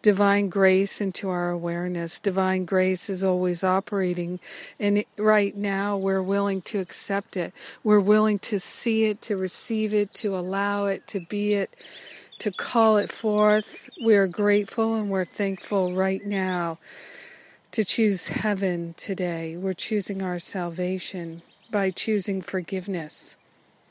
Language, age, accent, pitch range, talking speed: English, 50-69, American, 185-210 Hz, 140 wpm